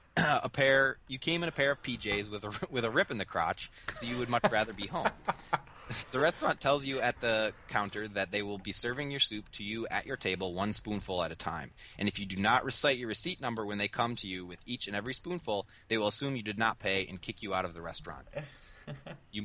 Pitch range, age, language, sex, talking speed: 95-120 Hz, 20-39, English, male, 255 wpm